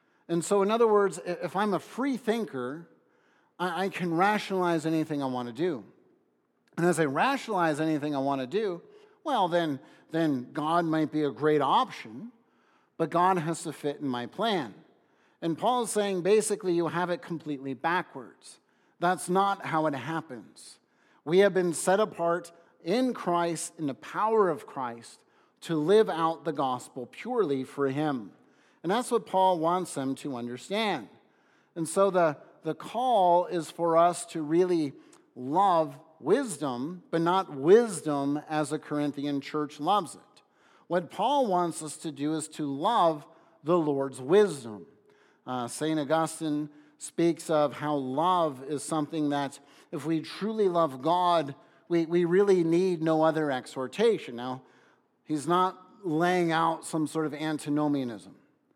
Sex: male